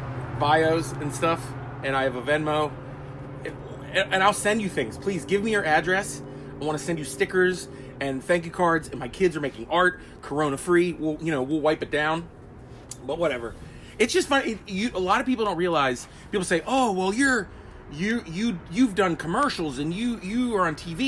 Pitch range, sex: 150-200 Hz, male